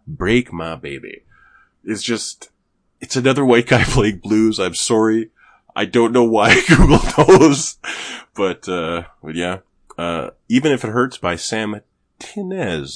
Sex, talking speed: male, 145 wpm